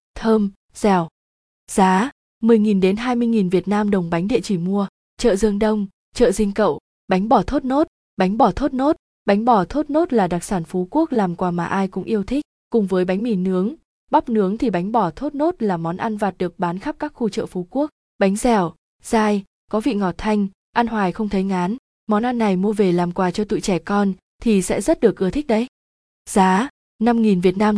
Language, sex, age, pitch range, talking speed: Vietnamese, female, 20-39, 190-235 Hz, 225 wpm